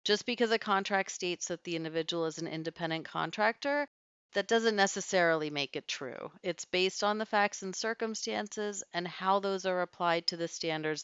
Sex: female